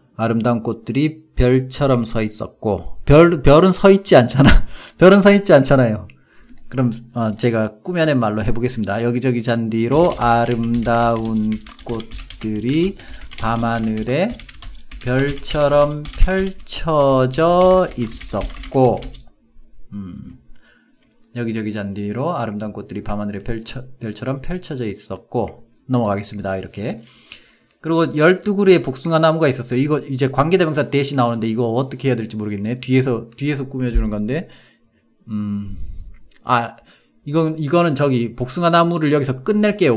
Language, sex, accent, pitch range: Korean, male, native, 115-150 Hz